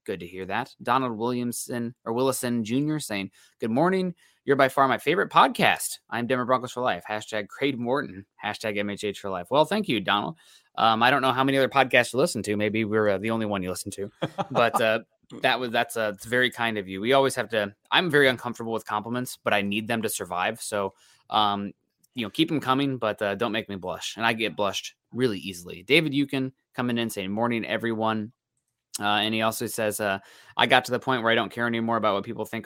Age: 20-39